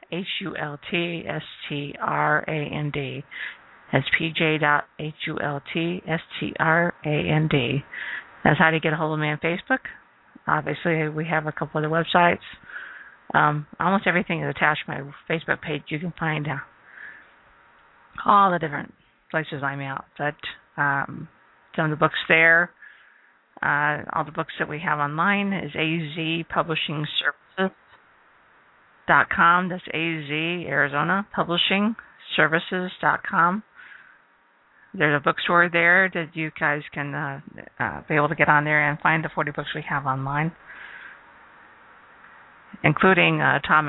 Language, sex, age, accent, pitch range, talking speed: English, female, 50-69, American, 145-170 Hz, 135 wpm